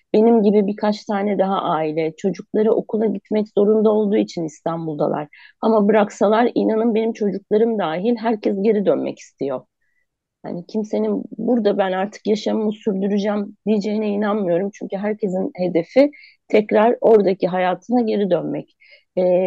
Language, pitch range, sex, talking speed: Turkish, 180-220 Hz, female, 125 wpm